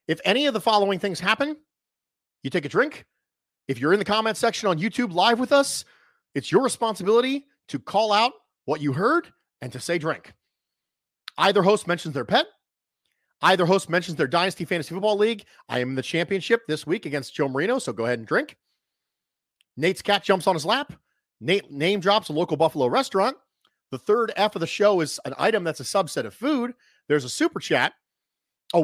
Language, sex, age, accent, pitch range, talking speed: English, male, 40-59, American, 150-220 Hz, 200 wpm